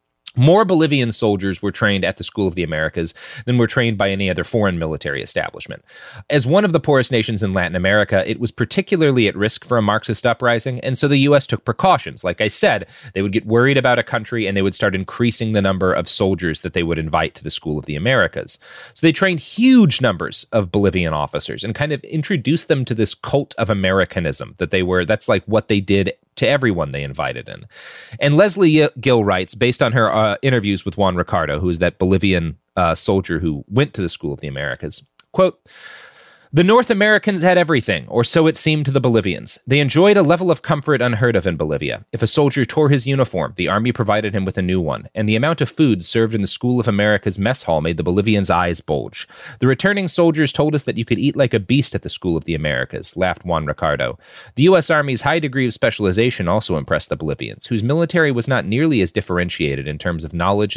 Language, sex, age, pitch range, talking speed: English, male, 30-49, 95-140 Hz, 225 wpm